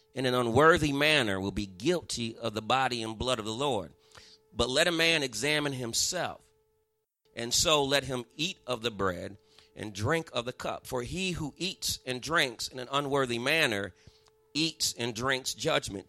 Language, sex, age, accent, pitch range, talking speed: English, male, 40-59, American, 110-160 Hz, 180 wpm